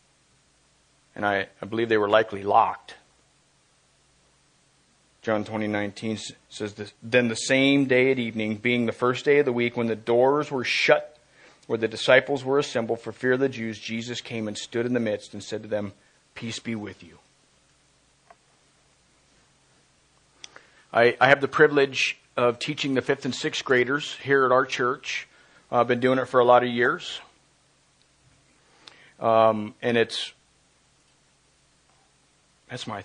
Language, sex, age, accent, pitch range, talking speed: English, male, 40-59, American, 110-135 Hz, 160 wpm